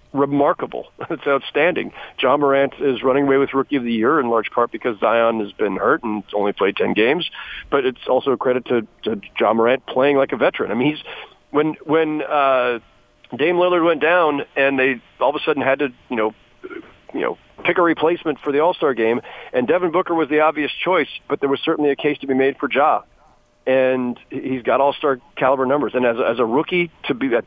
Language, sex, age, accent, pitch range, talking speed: English, male, 40-59, American, 120-145 Hz, 225 wpm